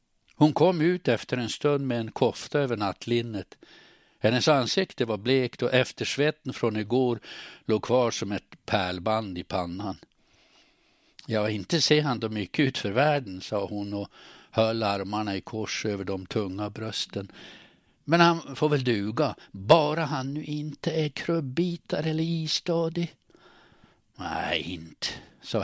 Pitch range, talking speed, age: 105-145 Hz, 145 wpm, 60-79